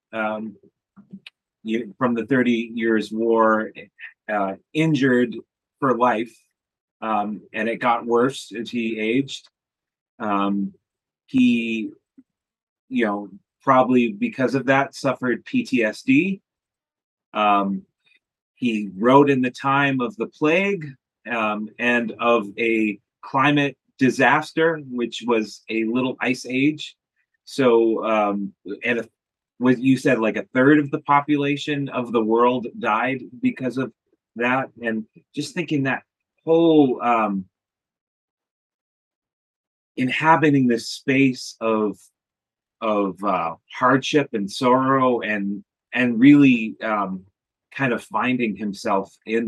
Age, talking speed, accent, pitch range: 30-49, 110 wpm, American, 110-140 Hz